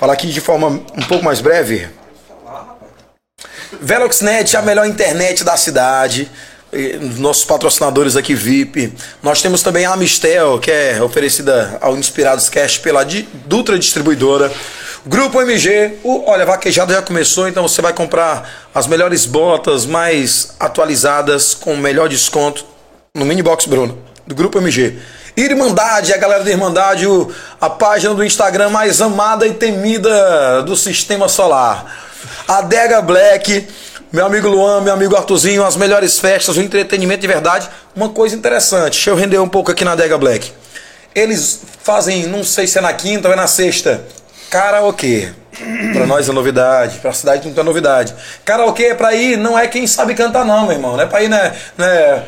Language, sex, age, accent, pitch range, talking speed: Portuguese, male, 20-39, Brazilian, 165-215 Hz, 170 wpm